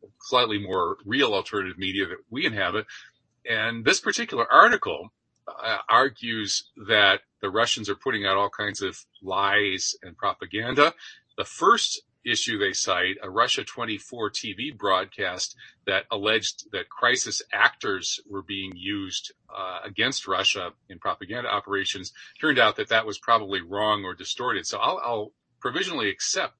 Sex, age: male, 40-59